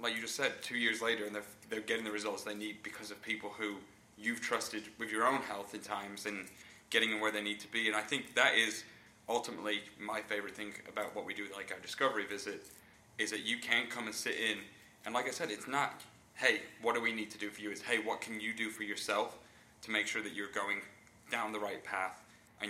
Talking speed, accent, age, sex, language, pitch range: 250 wpm, British, 20-39, male, English, 105-115 Hz